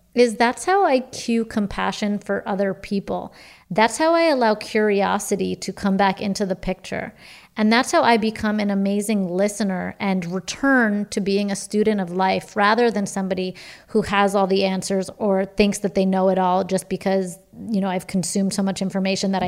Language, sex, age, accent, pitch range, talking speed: English, female, 30-49, American, 195-250 Hz, 190 wpm